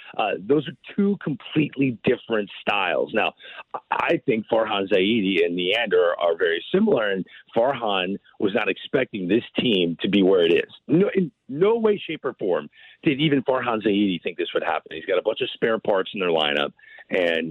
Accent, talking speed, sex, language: American, 185 wpm, male, English